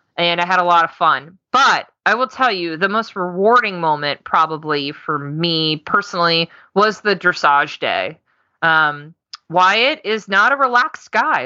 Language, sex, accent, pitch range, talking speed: English, female, American, 165-220 Hz, 160 wpm